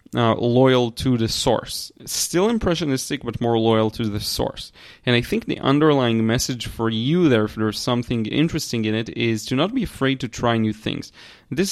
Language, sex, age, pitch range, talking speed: English, male, 30-49, 110-130 Hz, 195 wpm